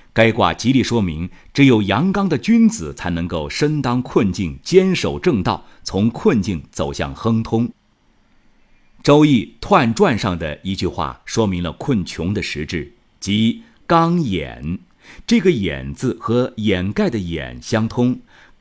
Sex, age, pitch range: male, 50-69, 85-140 Hz